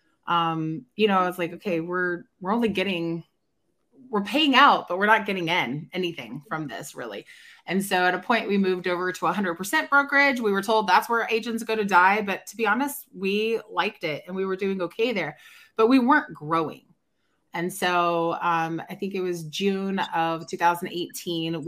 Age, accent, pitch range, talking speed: 20-39, American, 170-220 Hz, 195 wpm